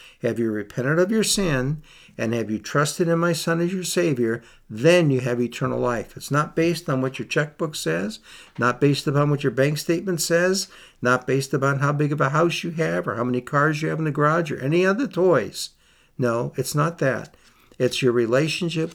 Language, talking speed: English, 210 wpm